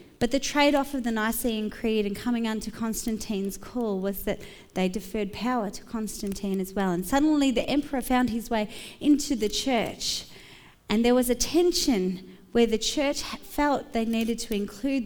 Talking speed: 175 wpm